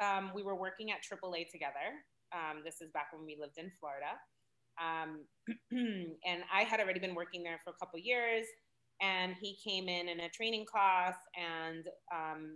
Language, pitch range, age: English, 160-190 Hz, 30-49